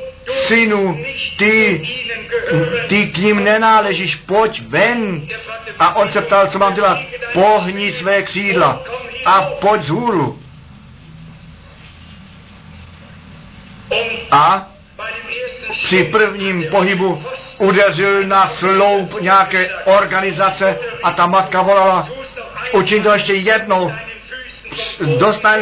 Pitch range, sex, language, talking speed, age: 175-210 Hz, male, Czech, 95 wpm, 50-69